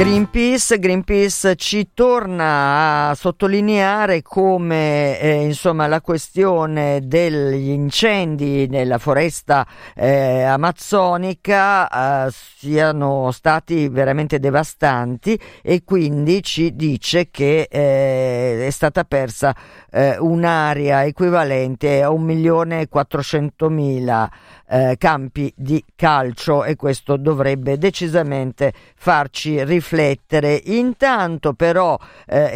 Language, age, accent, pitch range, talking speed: Italian, 50-69, native, 135-170 Hz, 90 wpm